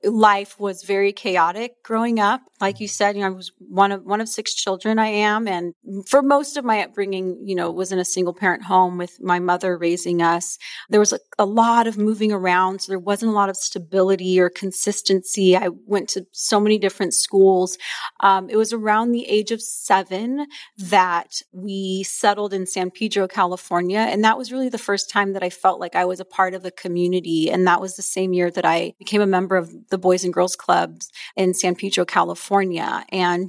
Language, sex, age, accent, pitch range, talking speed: English, female, 30-49, American, 185-210 Hz, 215 wpm